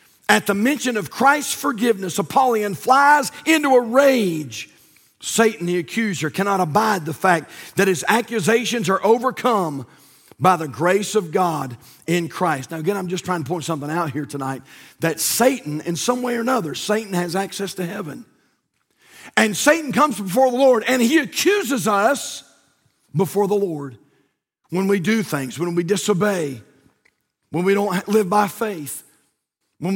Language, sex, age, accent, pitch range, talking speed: English, male, 50-69, American, 185-265 Hz, 160 wpm